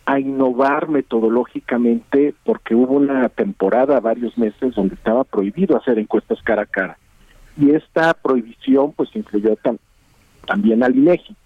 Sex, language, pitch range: male, Spanish, 115-165 Hz